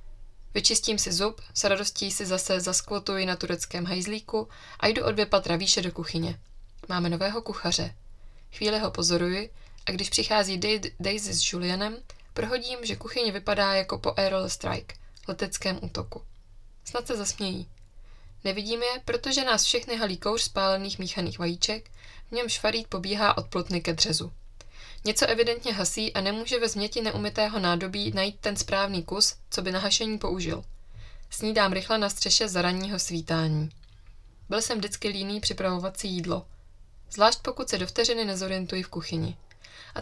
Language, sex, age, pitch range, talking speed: Czech, female, 20-39, 170-215 Hz, 160 wpm